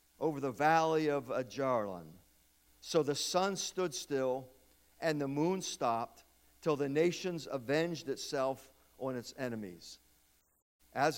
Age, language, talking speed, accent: 50-69, English, 125 wpm, American